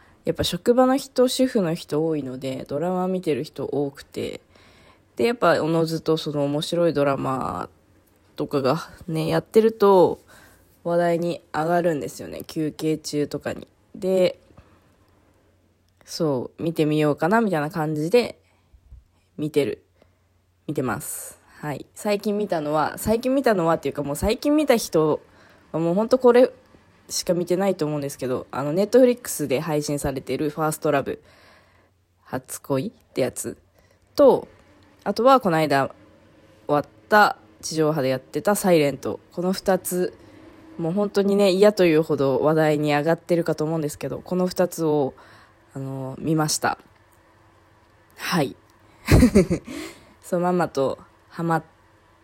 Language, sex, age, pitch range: Japanese, female, 20-39, 125-180 Hz